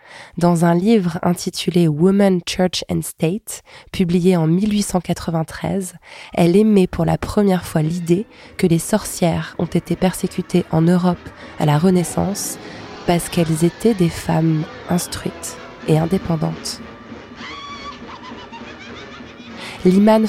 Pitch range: 170-195 Hz